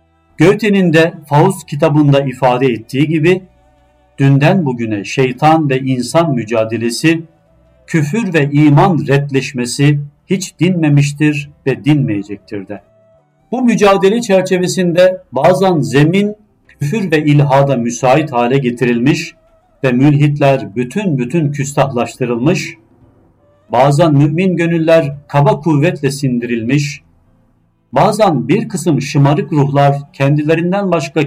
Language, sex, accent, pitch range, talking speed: Turkish, male, native, 120-160 Hz, 100 wpm